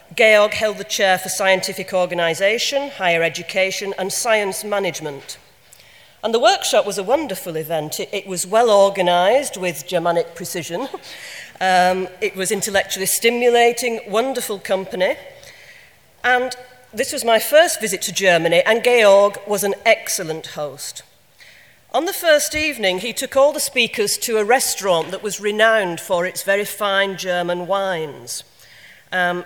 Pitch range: 185-245 Hz